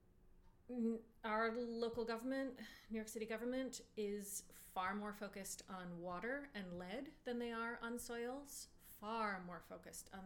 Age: 30-49